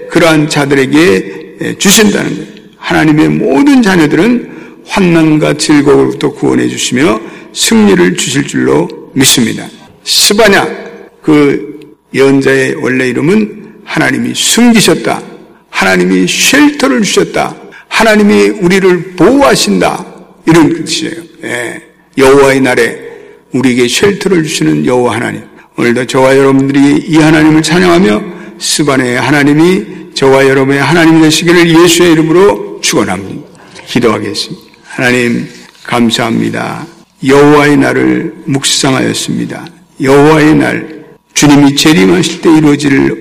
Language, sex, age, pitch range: Korean, male, 50-69, 135-175 Hz